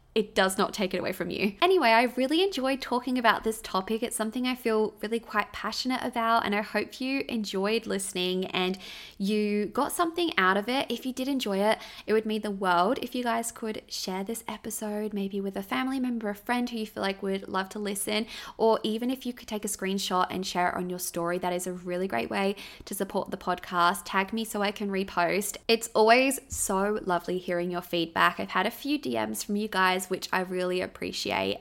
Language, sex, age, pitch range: English, female, 20-39, 190-230 Hz